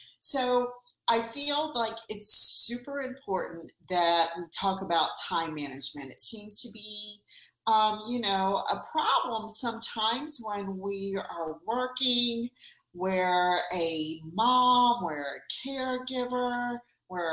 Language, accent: English, American